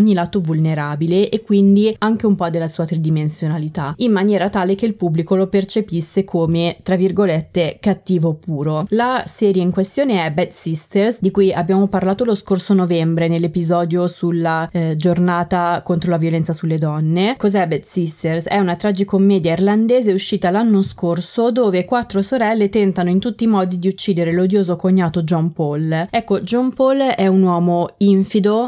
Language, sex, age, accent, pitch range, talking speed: Italian, female, 20-39, native, 170-205 Hz, 165 wpm